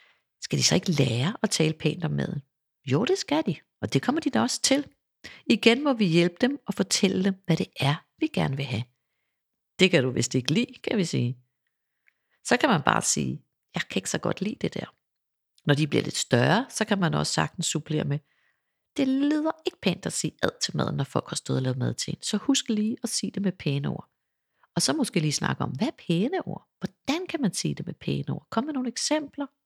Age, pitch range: 60-79, 155-240 Hz